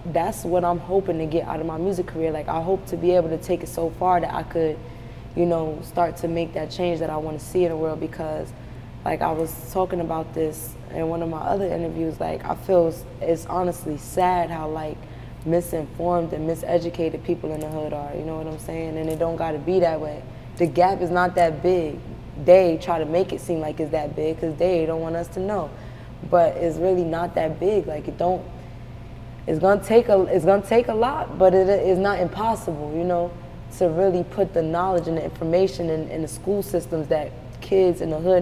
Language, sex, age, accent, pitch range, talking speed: English, female, 20-39, American, 155-180 Hz, 225 wpm